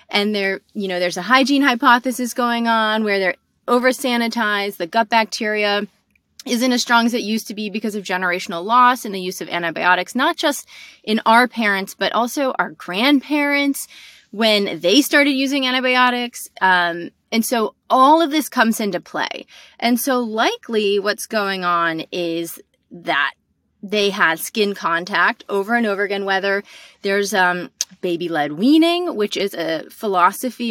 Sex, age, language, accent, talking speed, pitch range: female, 30-49, English, American, 160 wpm, 185-245 Hz